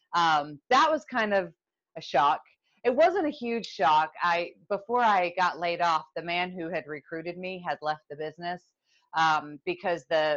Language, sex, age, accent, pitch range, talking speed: English, female, 30-49, American, 150-185 Hz, 180 wpm